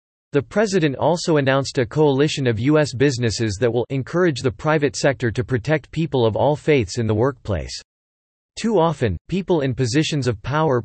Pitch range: 120-150 Hz